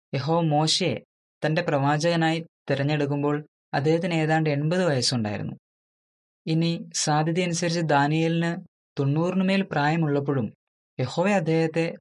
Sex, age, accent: female, 20-39, native